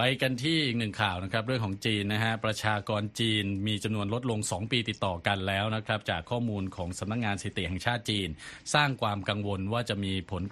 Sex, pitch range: male, 95-120 Hz